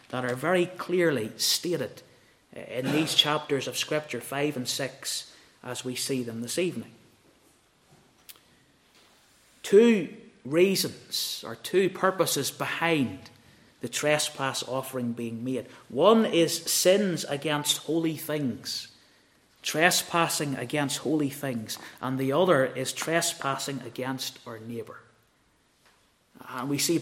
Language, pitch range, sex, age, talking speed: English, 130-165 Hz, male, 30-49, 115 wpm